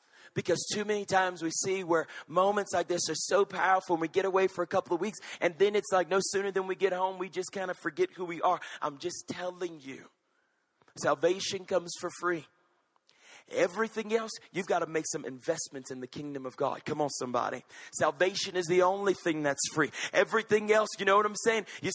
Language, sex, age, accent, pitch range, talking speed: English, male, 40-59, American, 160-195 Hz, 215 wpm